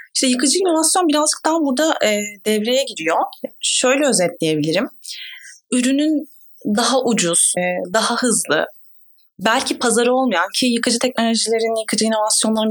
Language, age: Turkish, 30-49